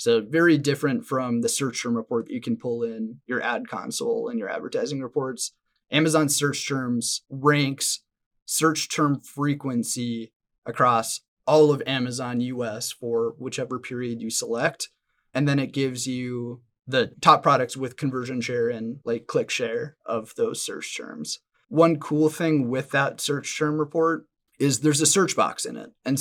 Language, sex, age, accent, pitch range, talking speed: English, male, 30-49, American, 125-155 Hz, 165 wpm